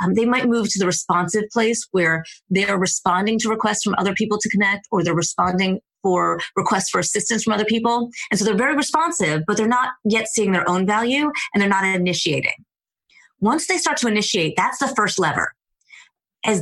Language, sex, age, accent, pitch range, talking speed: English, female, 30-49, American, 175-225 Hz, 200 wpm